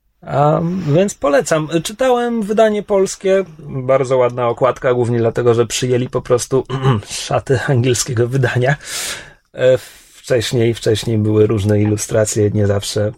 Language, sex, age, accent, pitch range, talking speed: Polish, male, 30-49, native, 125-175 Hz, 115 wpm